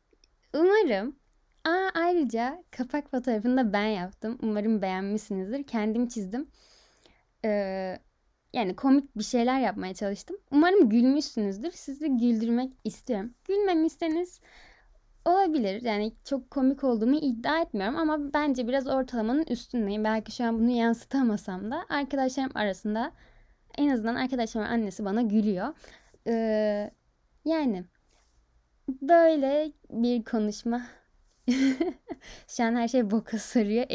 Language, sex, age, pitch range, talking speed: Turkish, female, 10-29, 210-275 Hz, 110 wpm